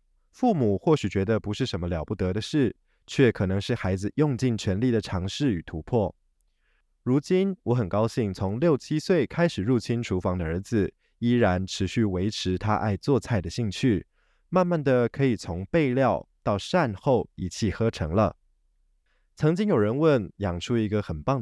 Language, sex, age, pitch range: Chinese, male, 20-39, 95-125 Hz